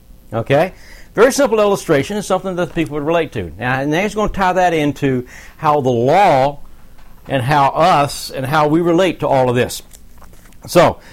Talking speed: 190 wpm